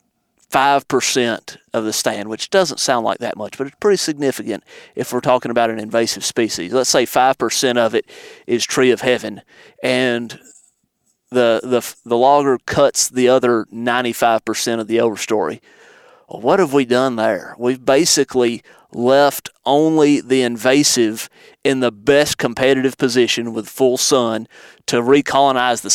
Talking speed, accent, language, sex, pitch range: 150 wpm, American, English, male, 120-145 Hz